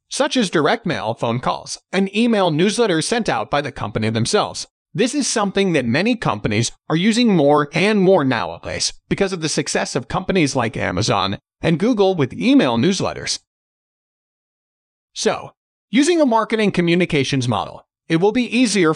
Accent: American